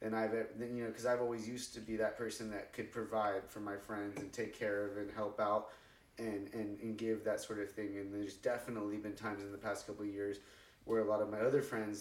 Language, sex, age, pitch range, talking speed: English, male, 30-49, 100-115 Hz, 255 wpm